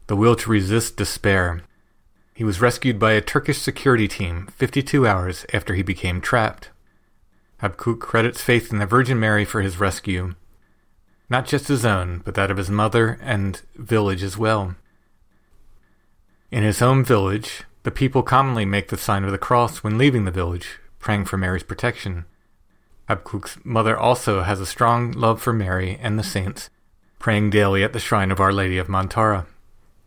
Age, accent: 40-59, American